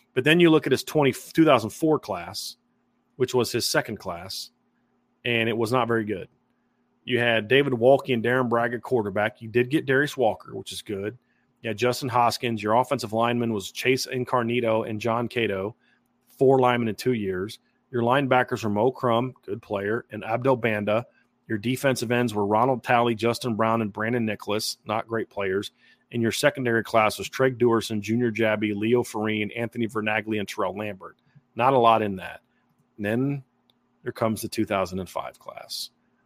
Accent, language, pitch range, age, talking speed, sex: American, English, 105-125 Hz, 30-49, 175 wpm, male